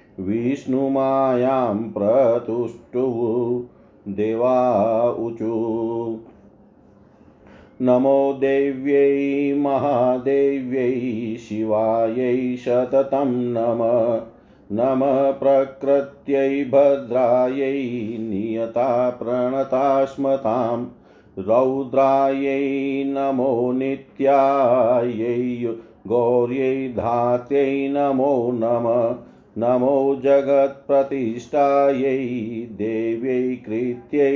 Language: Hindi